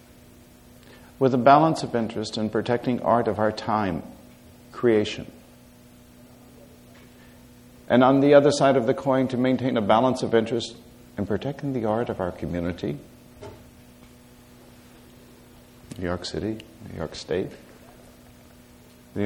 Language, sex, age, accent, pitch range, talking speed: English, male, 60-79, American, 85-130 Hz, 125 wpm